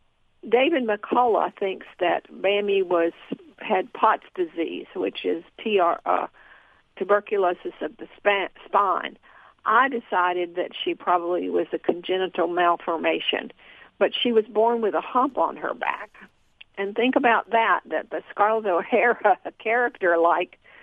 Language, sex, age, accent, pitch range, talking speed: English, female, 50-69, American, 180-235 Hz, 135 wpm